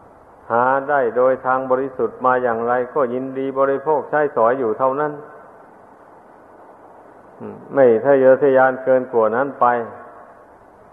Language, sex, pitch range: Thai, male, 125-140 Hz